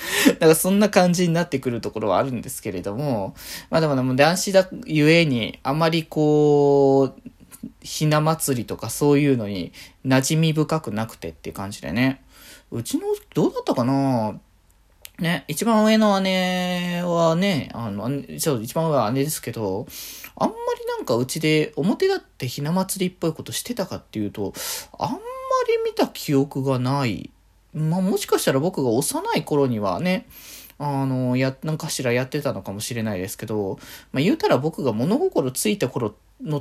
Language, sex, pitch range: Japanese, male, 120-180 Hz